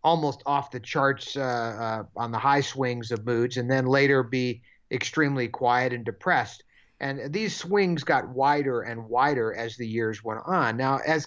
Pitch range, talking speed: 120-165 Hz, 180 wpm